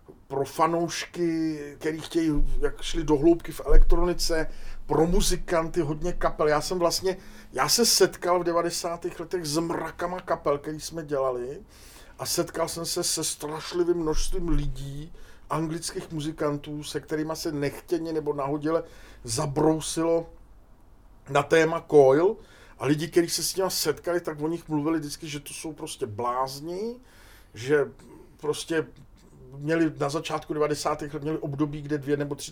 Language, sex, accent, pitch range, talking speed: Czech, male, native, 145-165 Hz, 145 wpm